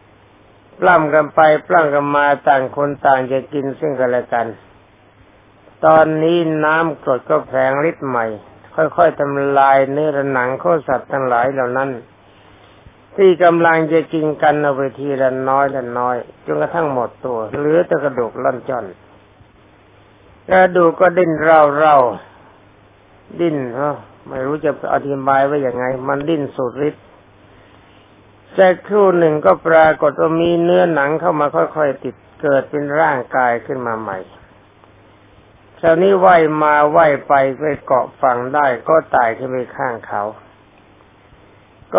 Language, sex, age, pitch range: Thai, male, 60-79, 105-155 Hz